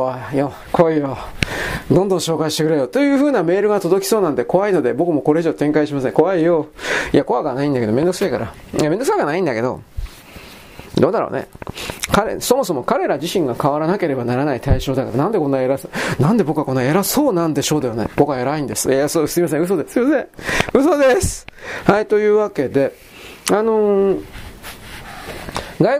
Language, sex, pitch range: Japanese, male, 160-255 Hz